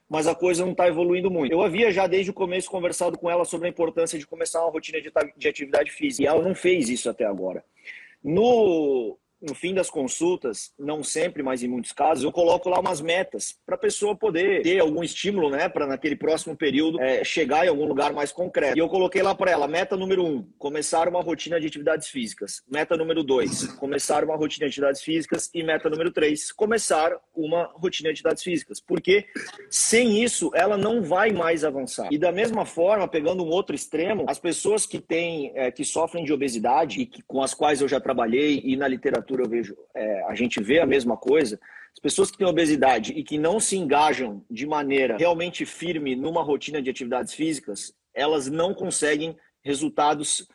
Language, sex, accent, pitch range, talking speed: Portuguese, male, Brazilian, 155-190 Hz, 200 wpm